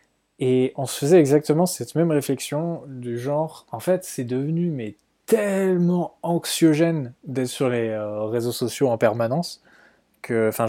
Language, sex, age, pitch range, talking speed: French, male, 20-39, 115-150 Hz, 150 wpm